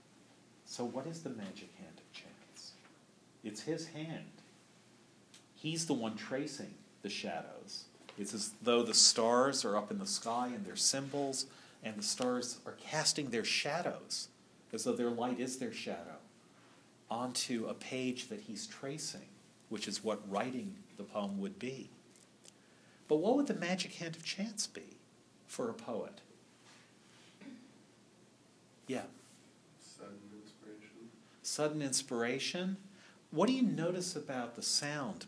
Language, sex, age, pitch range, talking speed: English, male, 50-69, 105-175 Hz, 135 wpm